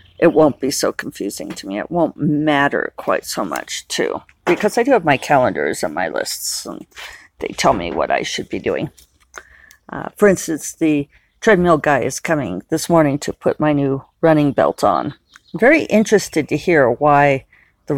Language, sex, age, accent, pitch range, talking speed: English, female, 40-59, American, 145-185 Hz, 185 wpm